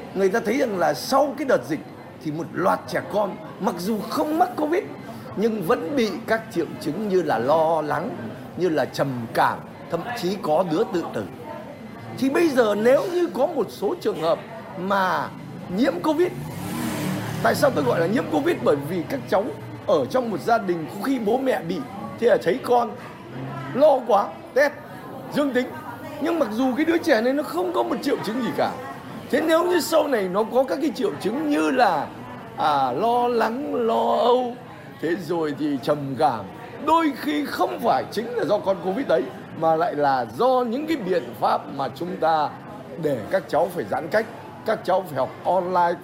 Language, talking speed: Vietnamese, 200 wpm